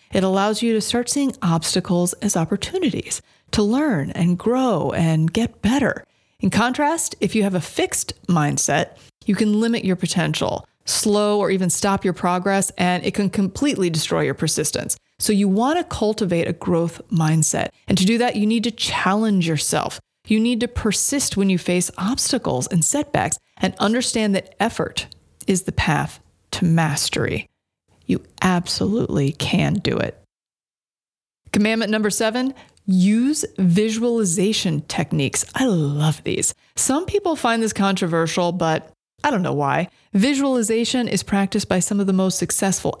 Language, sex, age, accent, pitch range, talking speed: English, female, 30-49, American, 180-230 Hz, 155 wpm